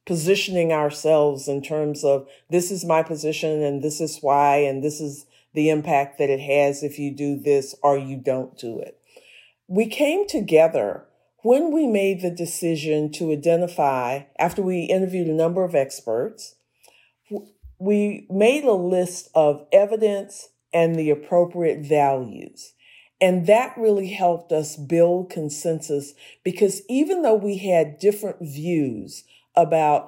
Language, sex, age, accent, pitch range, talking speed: English, female, 50-69, American, 145-185 Hz, 145 wpm